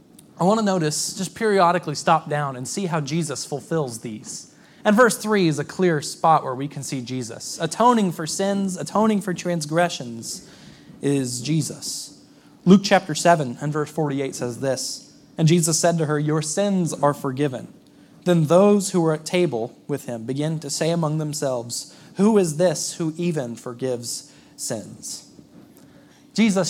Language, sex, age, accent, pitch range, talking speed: English, male, 20-39, American, 140-175 Hz, 160 wpm